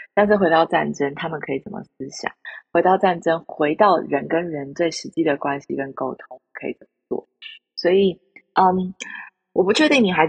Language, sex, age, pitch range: Chinese, female, 20-39, 155-205 Hz